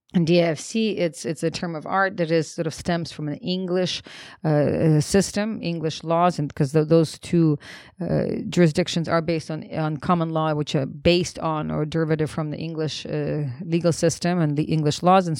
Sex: female